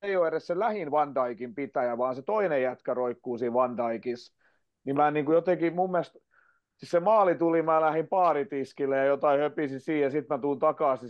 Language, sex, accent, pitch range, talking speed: Finnish, male, native, 125-170 Hz, 195 wpm